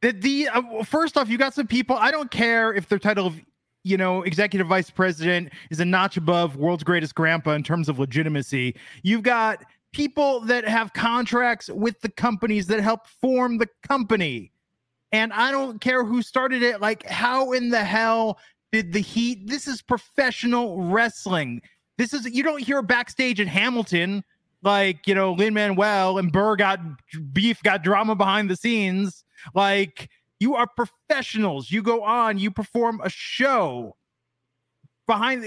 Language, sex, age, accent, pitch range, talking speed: English, male, 30-49, American, 180-240 Hz, 165 wpm